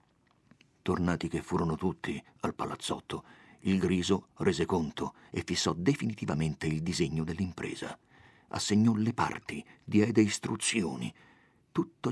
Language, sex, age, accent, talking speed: Italian, male, 50-69, native, 110 wpm